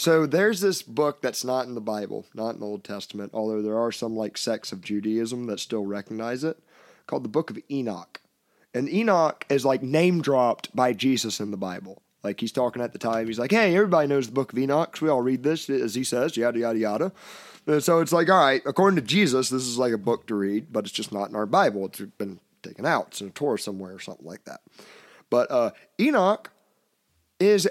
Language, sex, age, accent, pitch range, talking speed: English, male, 30-49, American, 115-150 Hz, 225 wpm